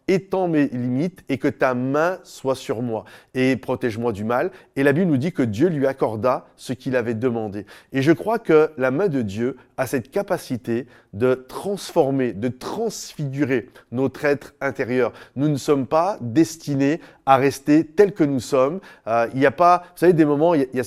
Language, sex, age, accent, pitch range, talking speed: French, male, 30-49, French, 125-155 Hz, 200 wpm